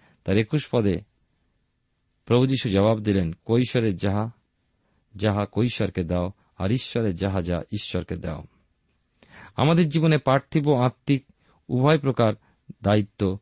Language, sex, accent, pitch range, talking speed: Bengali, male, native, 100-130 Hz, 85 wpm